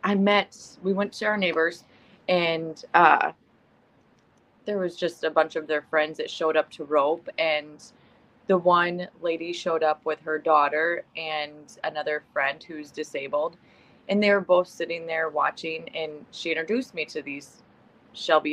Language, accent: English, American